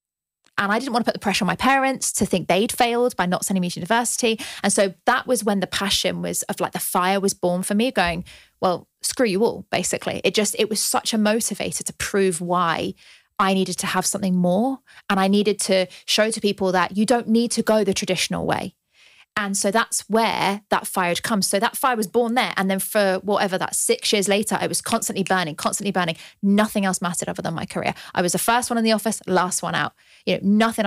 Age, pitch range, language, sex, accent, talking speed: 30-49, 180-220 Hz, English, female, British, 240 wpm